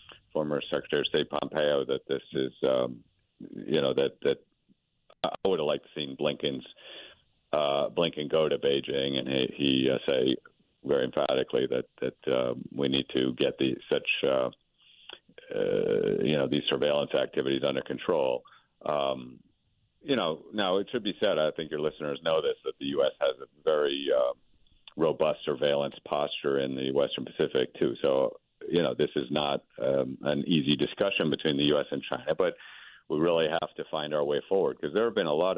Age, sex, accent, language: 50-69, male, American, English